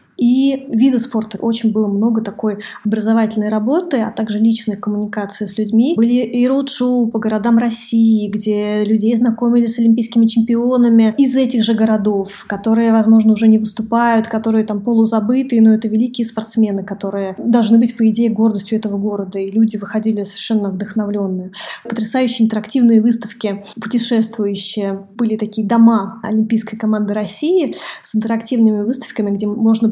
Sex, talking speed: female, 140 wpm